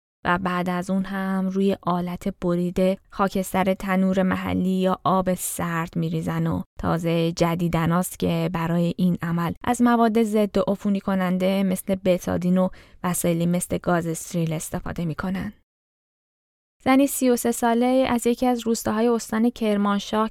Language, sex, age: Persian, female, 10-29